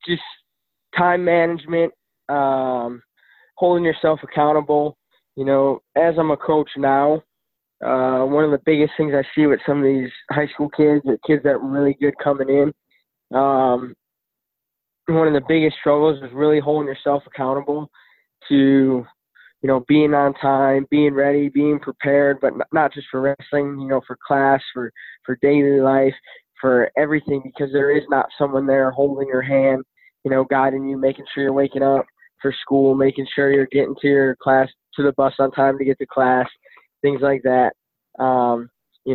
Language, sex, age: English, male, 20-39